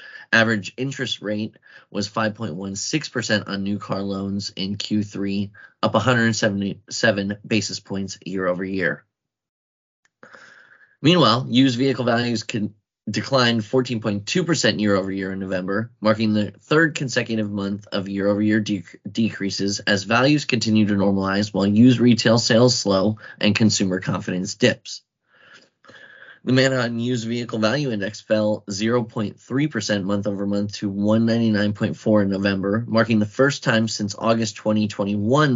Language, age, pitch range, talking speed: English, 20-39, 100-115 Hz, 120 wpm